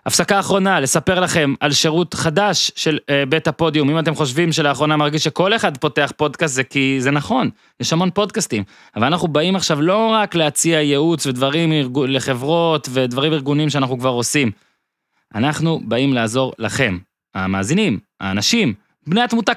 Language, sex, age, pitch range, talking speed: Hebrew, male, 20-39, 110-150 Hz, 155 wpm